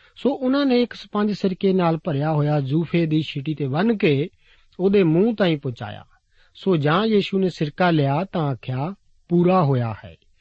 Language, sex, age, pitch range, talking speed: Punjabi, male, 50-69, 140-190 Hz, 175 wpm